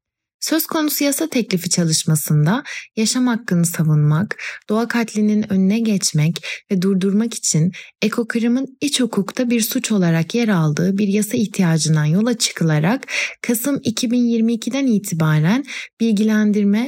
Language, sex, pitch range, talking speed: Turkish, female, 180-235 Hz, 115 wpm